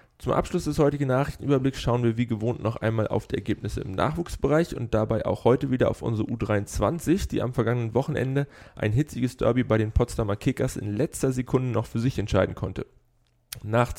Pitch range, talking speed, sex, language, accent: 105-130 Hz, 190 wpm, male, German, German